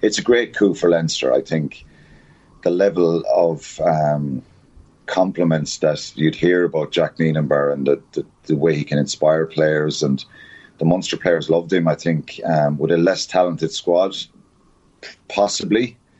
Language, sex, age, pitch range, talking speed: English, male, 30-49, 80-90 Hz, 160 wpm